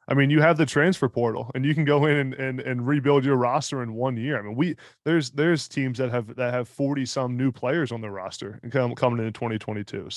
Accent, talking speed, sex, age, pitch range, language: American, 255 wpm, male, 20-39, 120-140 Hz, English